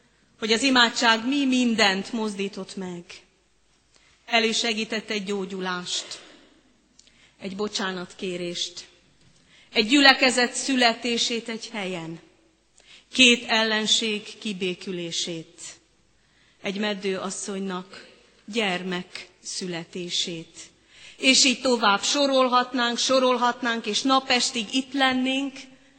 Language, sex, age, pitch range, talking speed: Hungarian, female, 30-49, 200-260 Hz, 75 wpm